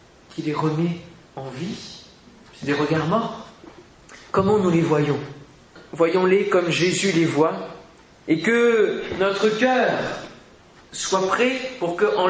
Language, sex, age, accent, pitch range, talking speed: French, male, 30-49, French, 165-230 Hz, 130 wpm